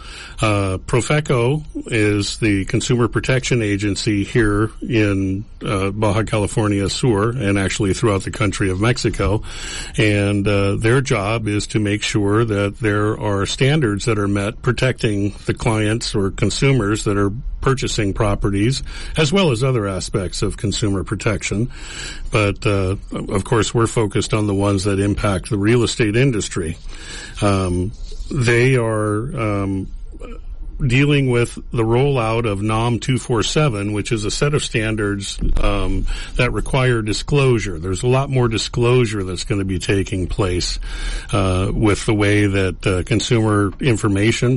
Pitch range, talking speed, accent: 100-120 Hz, 145 wpm, American